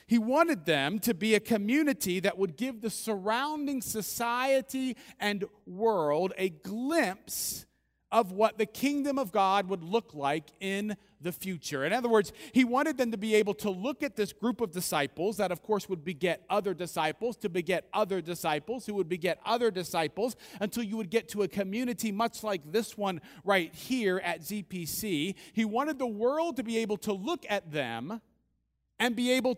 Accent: American